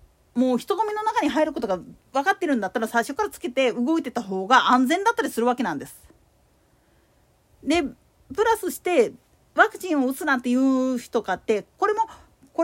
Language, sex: Japanese, female